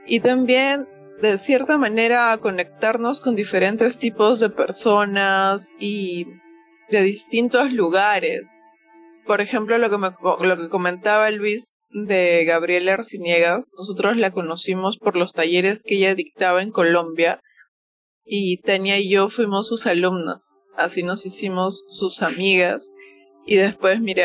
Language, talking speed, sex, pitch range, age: Spanish, 135 wpm, female, 175-210 Hz, 20-39